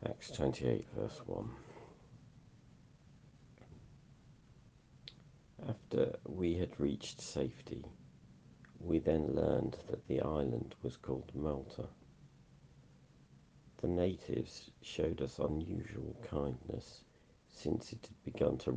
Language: English